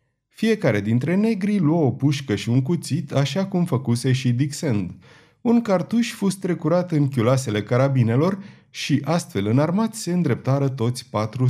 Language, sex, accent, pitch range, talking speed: Romanian, male, native, 120-165 Hz, 145 wpm